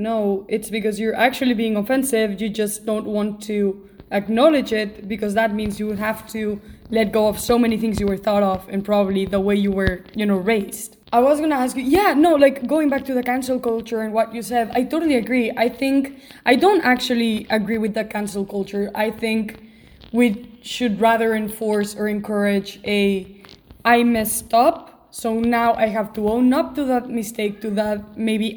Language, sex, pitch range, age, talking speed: English, female, 210-245 Hz, 20-39, 205 wpm